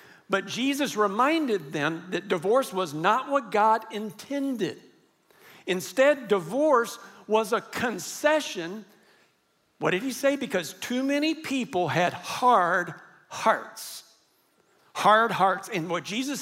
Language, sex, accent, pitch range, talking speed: English, male, American, 195-255 Hz, 115 wpm